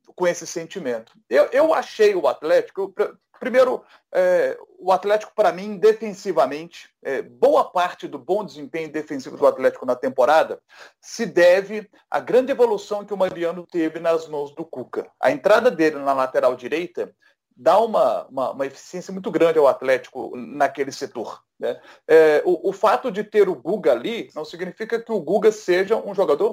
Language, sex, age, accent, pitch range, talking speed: Portuguese, male, 40-59, Brazilian, 170-250 Hz, 165 wpm